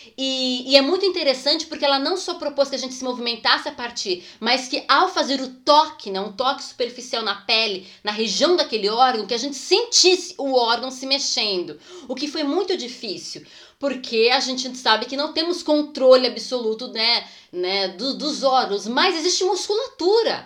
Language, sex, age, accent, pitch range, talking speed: Portuguese, female, 20-39, Brazilian, 230-300 Hz, 180 wpm